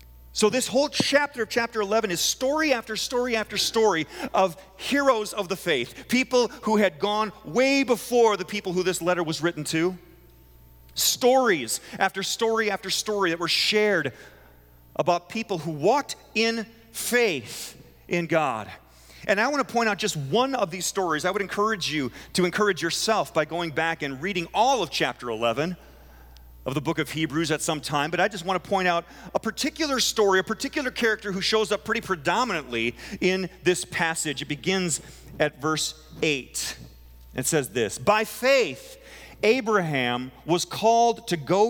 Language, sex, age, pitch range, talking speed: English, male, 40-59, 150-220 Hz, 170 wpm